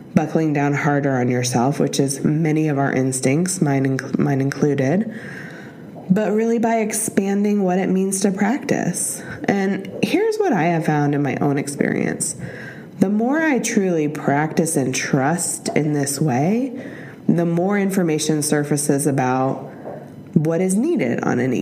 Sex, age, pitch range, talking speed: female, 20-39, 145-200 Hz, 145 wpm